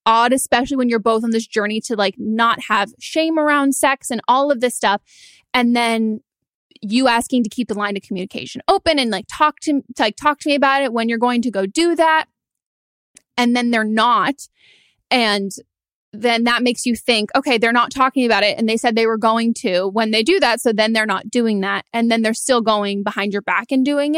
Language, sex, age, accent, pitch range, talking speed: English, female, 20-39, American, 215-250 Hz, 220 wpm